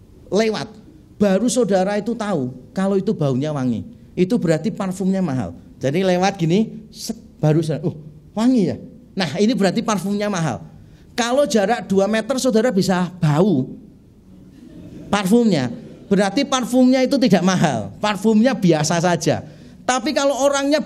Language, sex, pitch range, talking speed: Indonesian, male, 175-240 Hz, 130 wpm